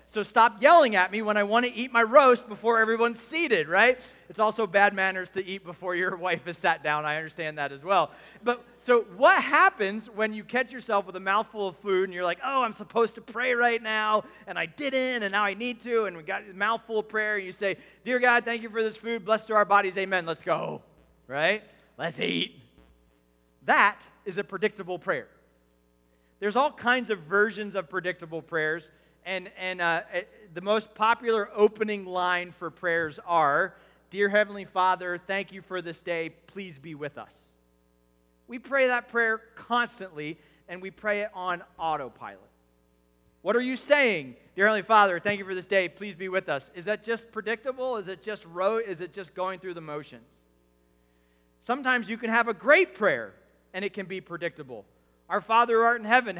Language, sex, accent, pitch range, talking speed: English, male, American, 175-225 Hz, 200 wpm